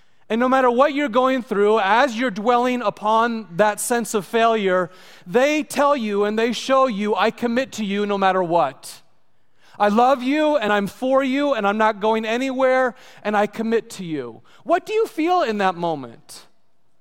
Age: 30-49